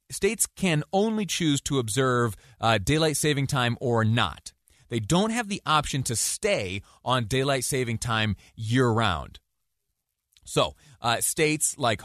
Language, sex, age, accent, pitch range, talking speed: English, male, 30-49, American, 100-135 Hz, 140 wpm